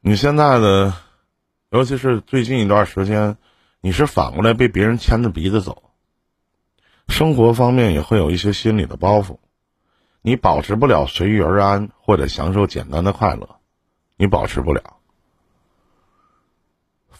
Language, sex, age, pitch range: Chinese, male, 50-69, 85-115 Hz